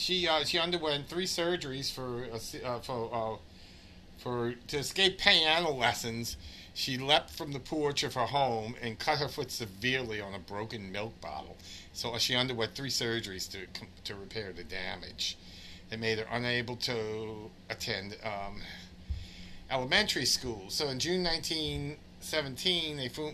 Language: English